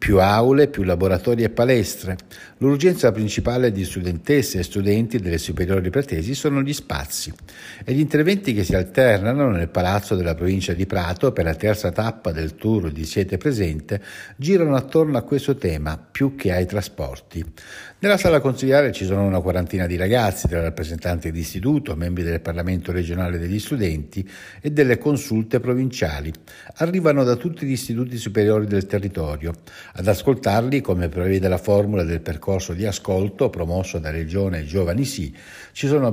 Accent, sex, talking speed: native, male, 160 wpm